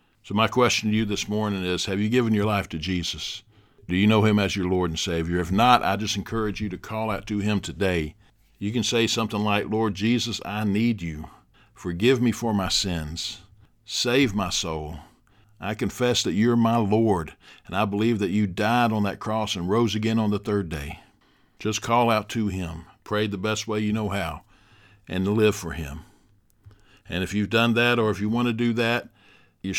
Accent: American